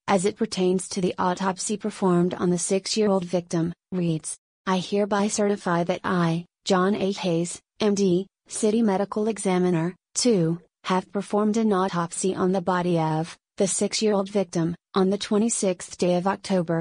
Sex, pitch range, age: female, 180-200 Hz, 30-49